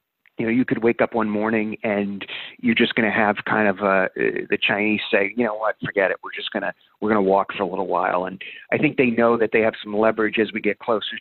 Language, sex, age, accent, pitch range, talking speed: English, male, 40-59, American, 105-145 Hz, 275 wpm